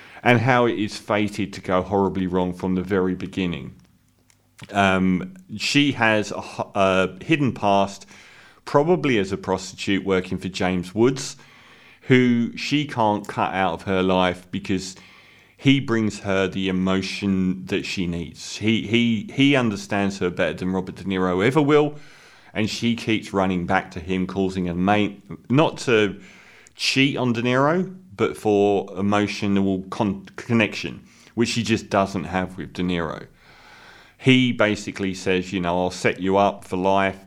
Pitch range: 95-110 Hz